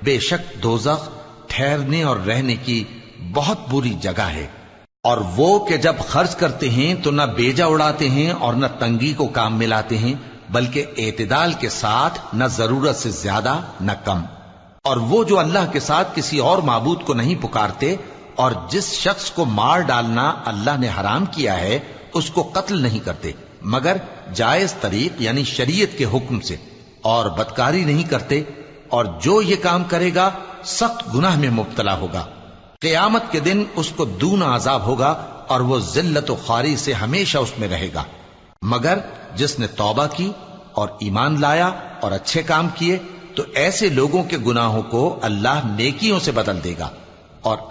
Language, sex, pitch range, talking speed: Arabic, male, 115-165 Hz, 170 wpm